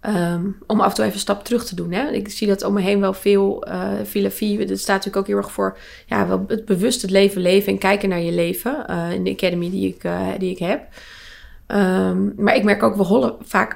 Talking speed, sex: 260 wpm, female